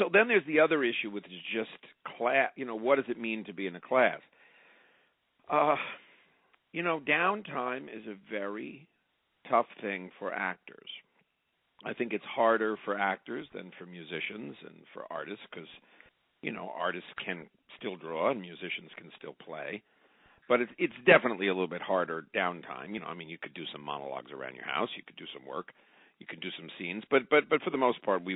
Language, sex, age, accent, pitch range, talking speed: English, male, 50-69, American, 100-160 Hz, 200 wpm